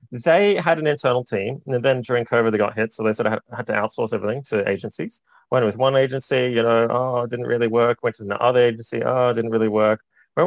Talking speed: 250 wpm